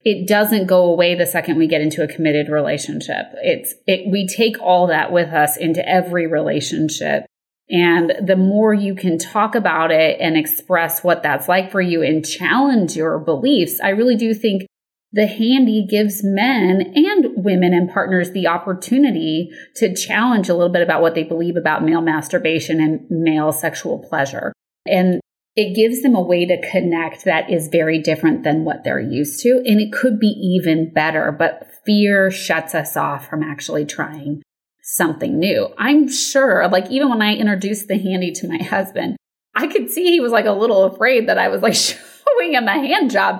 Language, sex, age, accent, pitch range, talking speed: English, female, 30-49, American, 165-220 Hz, 185 wpm